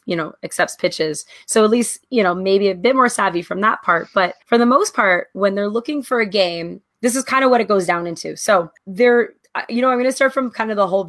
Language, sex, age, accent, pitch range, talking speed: English, female, 20-39, American, 175-230 Hz, 275 wpm